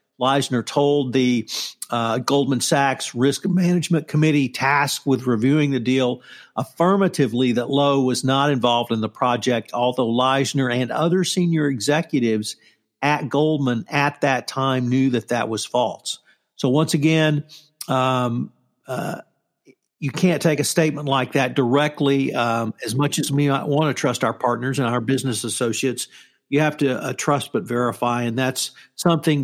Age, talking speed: 50-69, 155 wpm